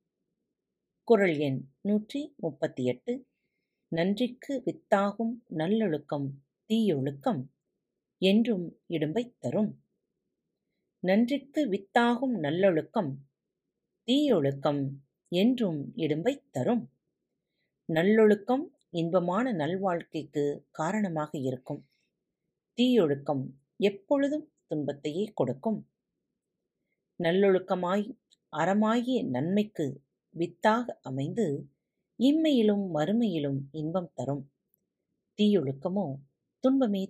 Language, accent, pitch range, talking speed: Tamil, native, 155-230 Hz, 60 wpm